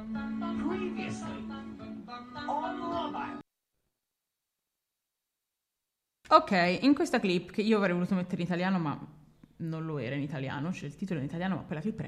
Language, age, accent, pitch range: Italian, 20-39, native, 165-215 Hz